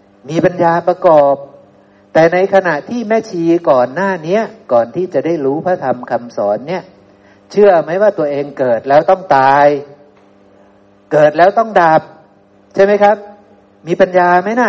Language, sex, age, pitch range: Thai, male, 60-79, 125-185 Hz